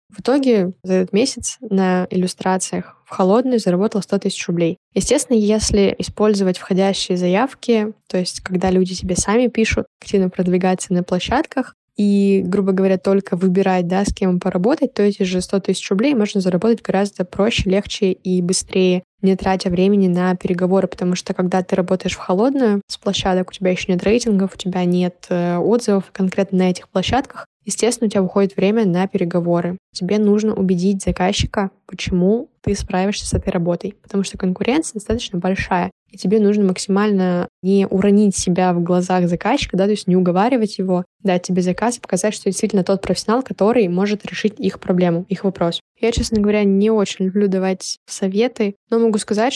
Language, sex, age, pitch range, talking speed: Russian, female, 20-39, 185-210 Hz, 175 wpm